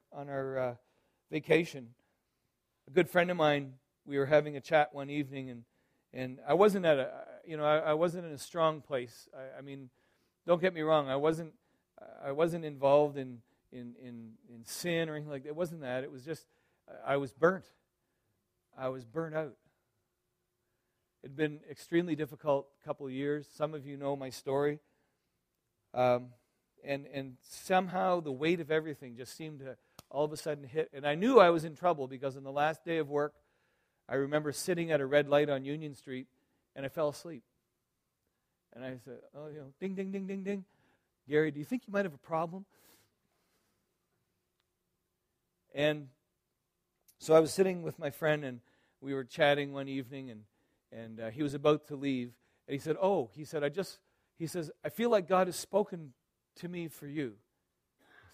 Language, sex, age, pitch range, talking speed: English, male, 40-59, 135-160 Hz, 190 wpm